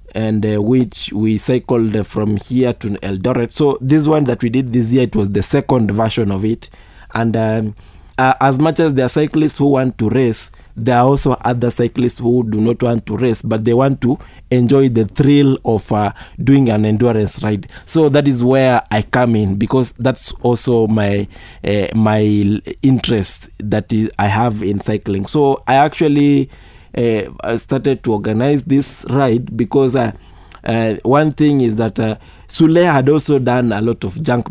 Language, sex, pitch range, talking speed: English, male, 105-130 Hz, 185 wpm